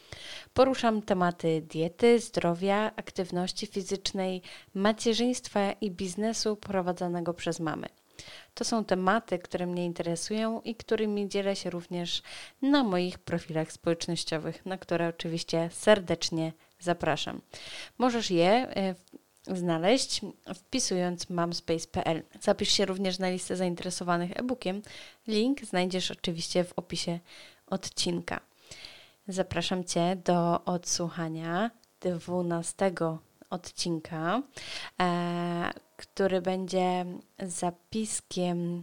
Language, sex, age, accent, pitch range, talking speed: Polish, female, 20-39, native, 175-200 Hz, 90 wpm